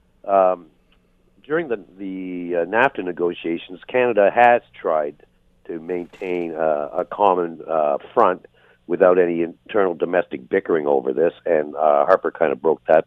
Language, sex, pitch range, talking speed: English, male, 85-110 Hz, 140 wpm